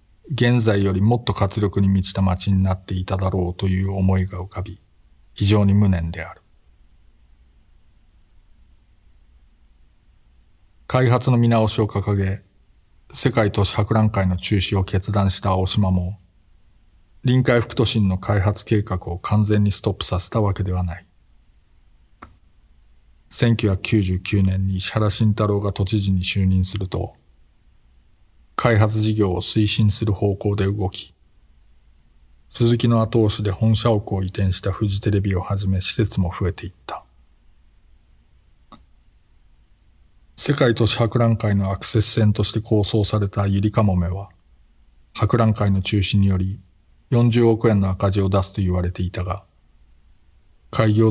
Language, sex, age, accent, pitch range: Japanese, male, 50-69, native, 90-105 Hz